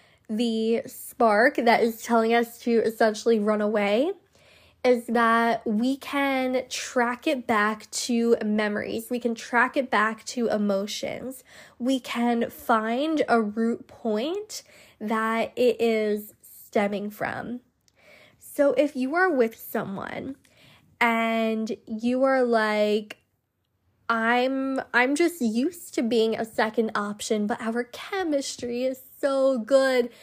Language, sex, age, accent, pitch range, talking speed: English, female, 10-29, American, 220-260 Hz, 125 wpm